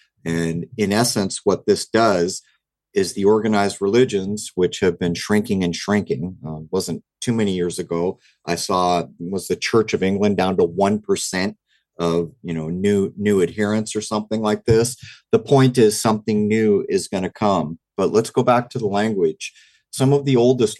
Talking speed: 180 wpm